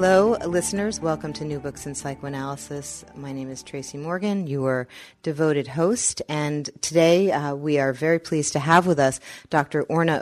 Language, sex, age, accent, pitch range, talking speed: English, female, 30-49, American, 140-170 Hz, 170 wpm